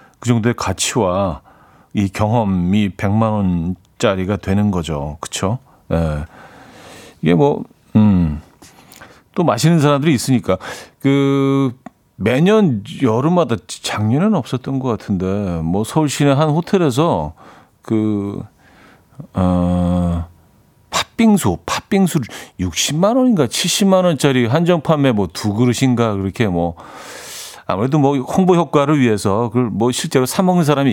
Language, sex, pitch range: Korean, male, 100-150 Hz